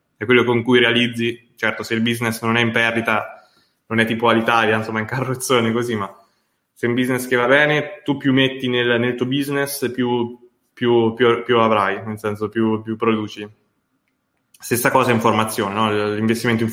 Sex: male